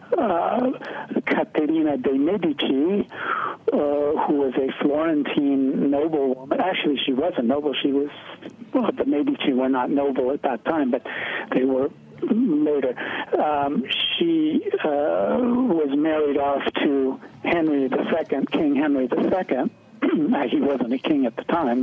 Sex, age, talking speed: male, 60-79, 140 wpm